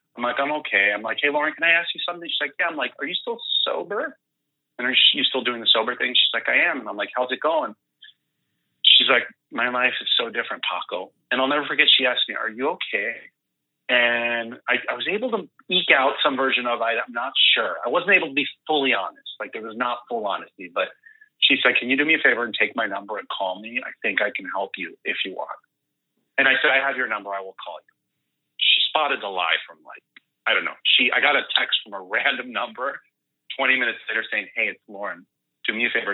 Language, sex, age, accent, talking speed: English, male, 30-49, American, 245 wpm